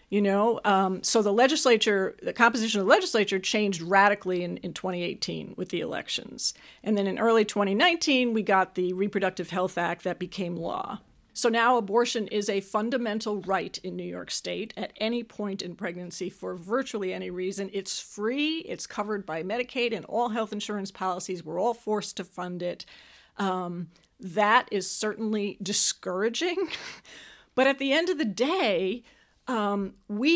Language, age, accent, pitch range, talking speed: English, 40-59, American, 195-240 Hz, 165 wpm